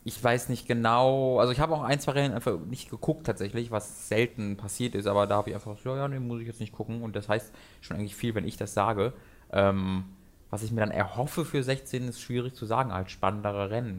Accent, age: German, 20-39